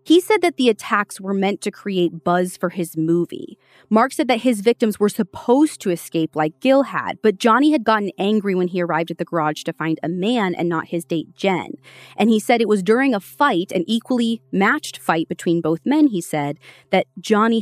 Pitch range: 165-220 Hz